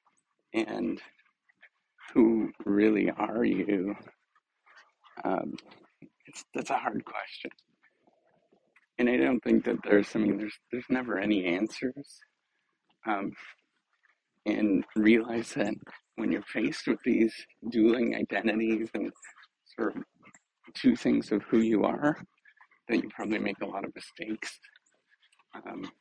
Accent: American